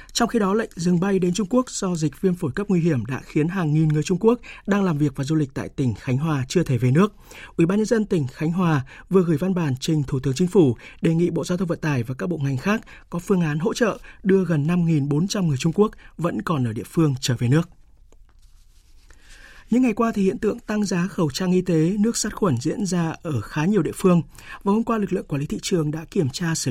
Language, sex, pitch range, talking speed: Vietnamese, male, 150-190 Hz, 265 wpm